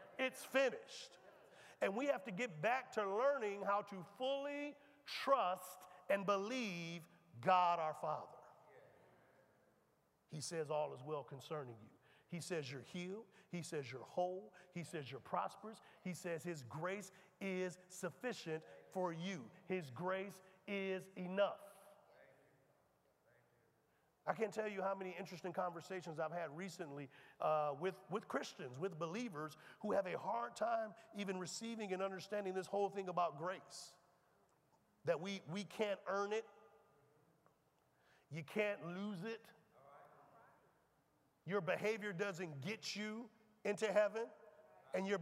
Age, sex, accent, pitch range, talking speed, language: 50-69, male, American, 170-210 Hz, 135 wpm, English